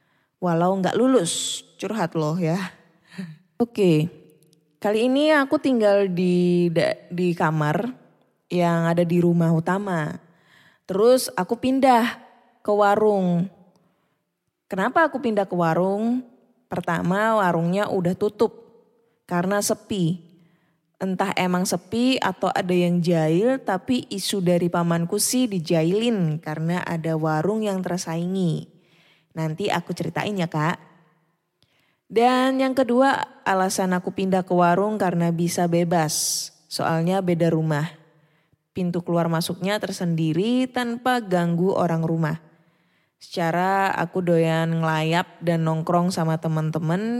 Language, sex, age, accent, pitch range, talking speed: Indonesian, female, 20-39, native, 165-205 Hz, 115 wpm